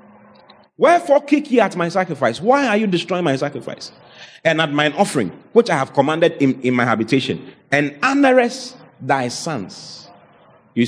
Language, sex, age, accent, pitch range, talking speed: English, male, 30-49, Nigerian, 125-180 Hz, 160 wpm